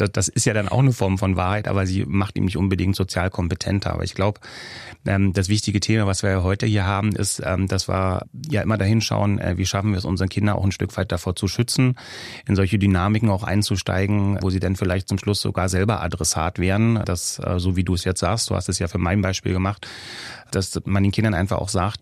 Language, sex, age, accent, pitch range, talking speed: German, male, 30-49, German, 95-110 Hz, 230 wpm